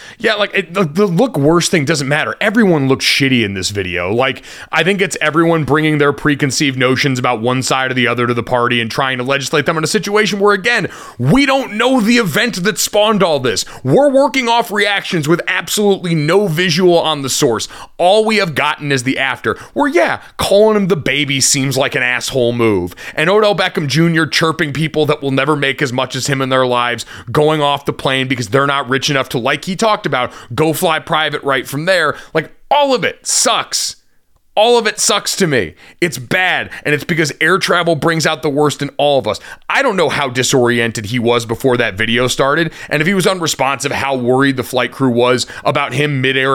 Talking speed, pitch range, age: 220 wpm, 130-175 Hz, 30-49